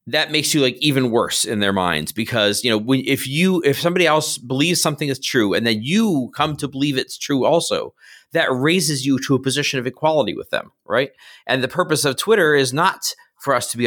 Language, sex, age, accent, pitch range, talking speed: English, male, 30-49, American, 105-145 Hz, 225 wpm